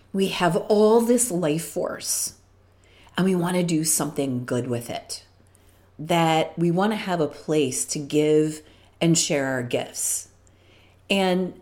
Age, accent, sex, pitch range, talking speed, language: 40-59, American, female, 140-185 Hz, 150 wpm, English